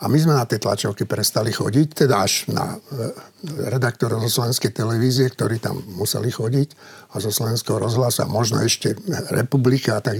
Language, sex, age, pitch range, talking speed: Slovak, male, 60-79, 115-150 Hz, 170 wpm